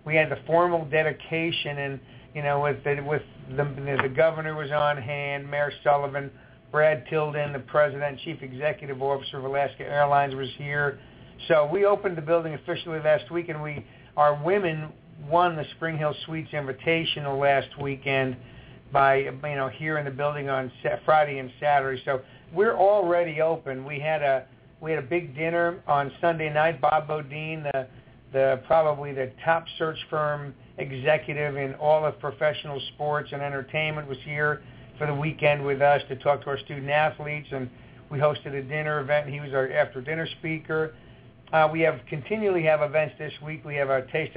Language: English